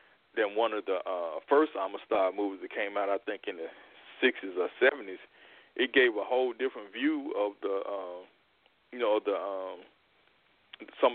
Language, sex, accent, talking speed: English, male, American, 170 wpm